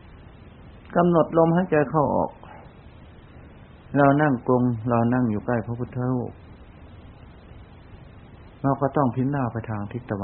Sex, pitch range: male, 100-130 Hz